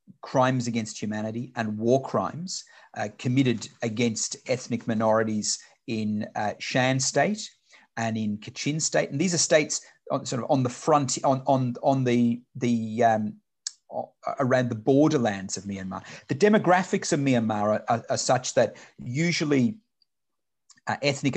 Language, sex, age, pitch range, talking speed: English, male, 40-59, 110-140 Hz, 140 wpm